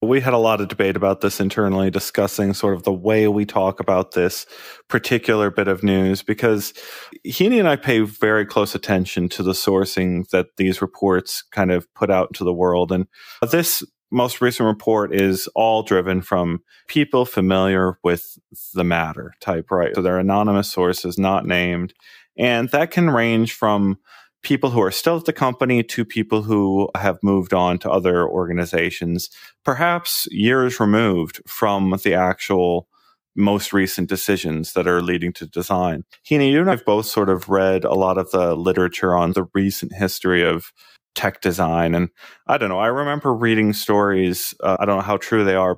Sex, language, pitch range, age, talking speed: male, English, 95-110 Hz, 30-49, 180 wpm